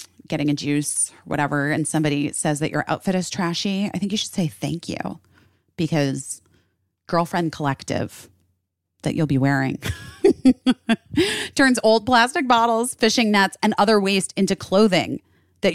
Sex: female